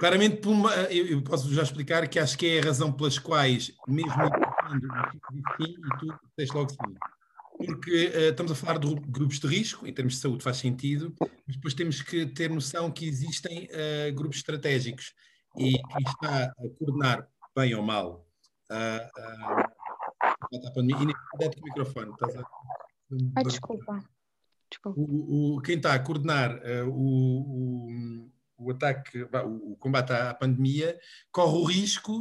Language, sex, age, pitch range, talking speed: Portuguese, male, 50-69, 130-165 Hz, 135 wpm